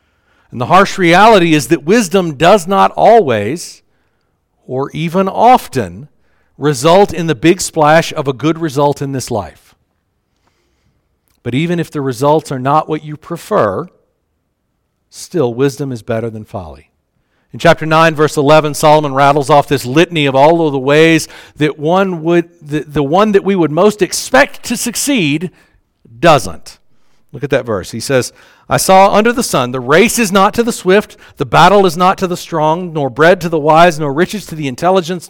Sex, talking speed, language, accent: male, 180 wpm, English, American